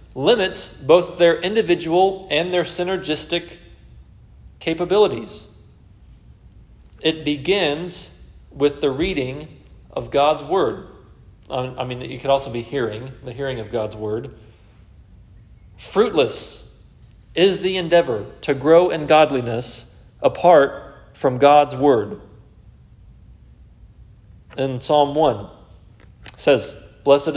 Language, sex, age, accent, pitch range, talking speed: English, male, 40-59, American, 120-165 Hz, 100 wpm